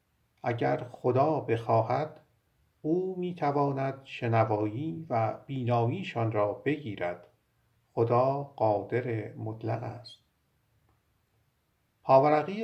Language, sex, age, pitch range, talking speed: Persian, male, 50-69, 110-130 Hz, 70 wpm